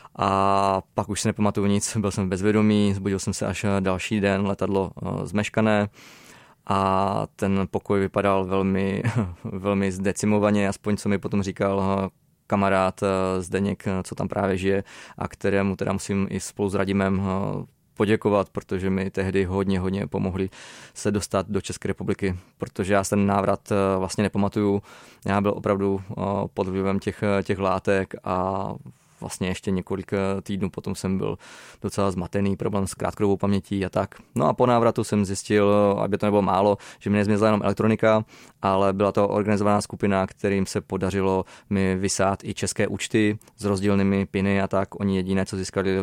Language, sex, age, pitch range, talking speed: Czech, male, 20-39, 95-105 Hz, 160 wpm